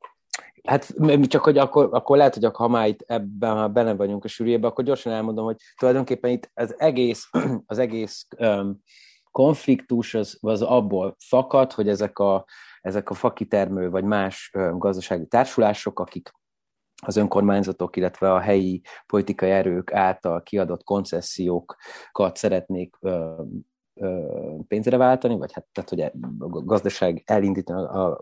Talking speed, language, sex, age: 140 wpm, Hungarian, male, 30-49